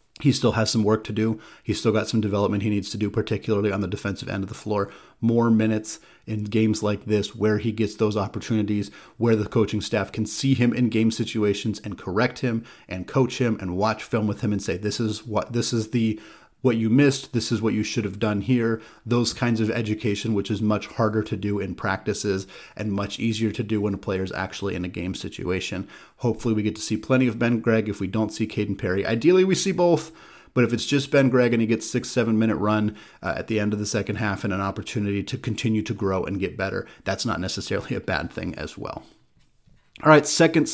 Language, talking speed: English, 235 wpm